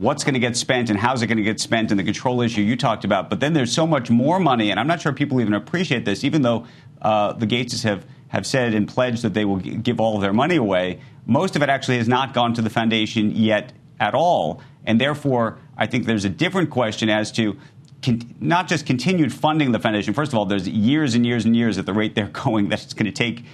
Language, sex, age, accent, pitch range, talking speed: English, male, 40-59, American, 105-130 Hz, 265 wpm